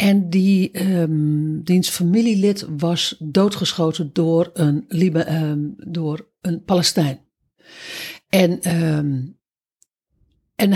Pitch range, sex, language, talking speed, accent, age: 155-195 Hz, female, Dutch, 95 wpm, Dutch, 60-79